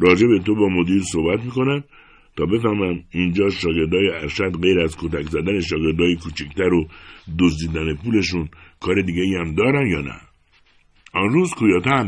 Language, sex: Persian, male